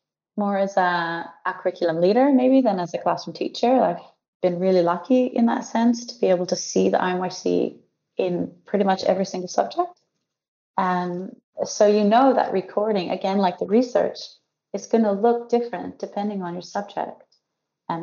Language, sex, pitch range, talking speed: English, female, 175-205 Hz, 175 wpm